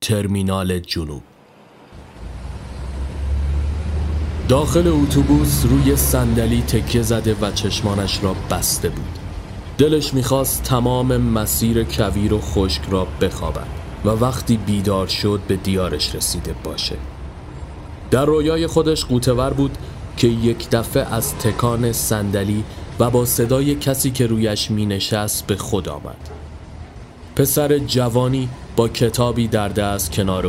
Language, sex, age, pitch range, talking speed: Persian, male, 30-49, 90-120 Hz, 115 wpm